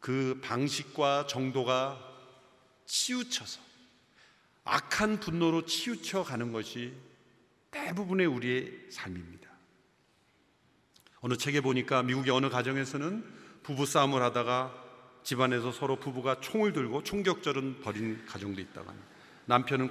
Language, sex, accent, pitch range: Korean, male, native, 125-170 Hz